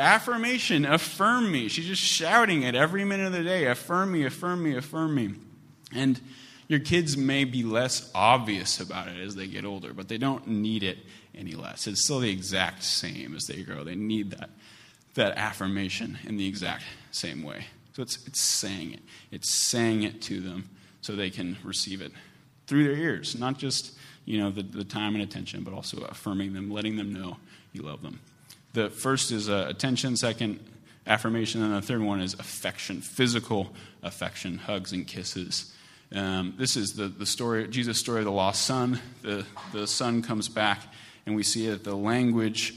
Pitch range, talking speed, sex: 100-130 Hz, 190 wpm, male